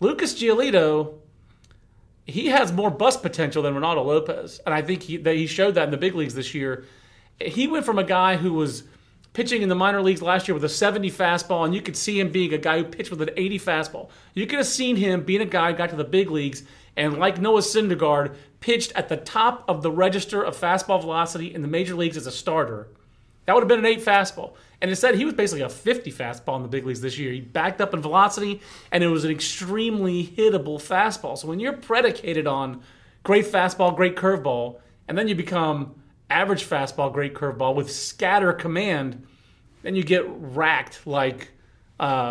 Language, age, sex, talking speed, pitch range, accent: English, 40-59, male, 215 wpm, 145-195 Hz, American